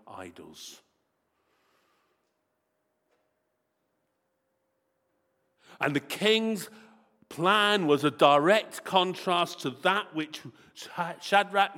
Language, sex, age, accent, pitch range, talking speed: English, male, 50-69, British, 130-190 Hz, 65 wpm